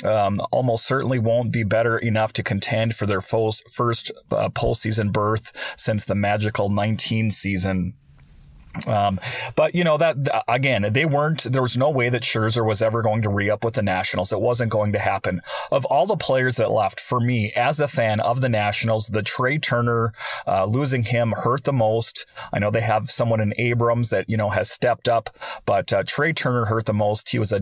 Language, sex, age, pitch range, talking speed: English, male, 30-49, 110-130 Hz, 200 wpm